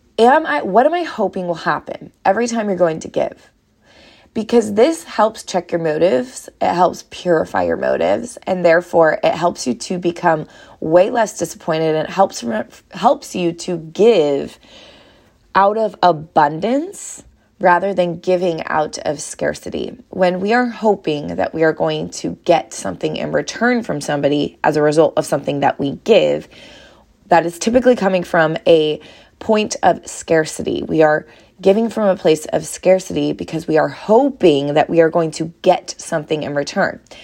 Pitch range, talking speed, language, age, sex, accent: 160-210 Hz, 170 wpm, English, 20-39, female, American